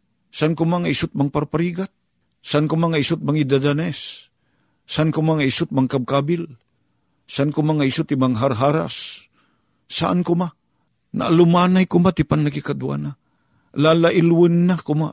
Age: 50-69